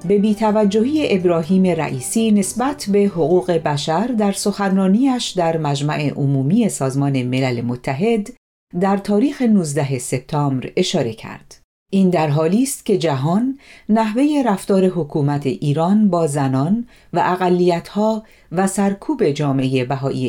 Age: 40-59